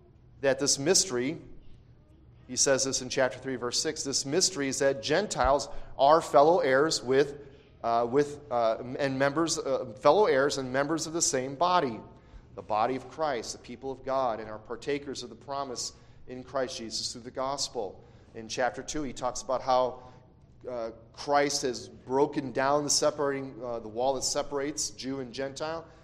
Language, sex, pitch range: English, male, 130-150 Hz